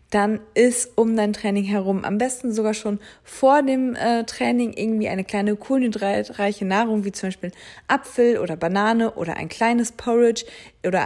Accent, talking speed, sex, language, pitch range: German, 165 wpm, female, German, 190-230 Hz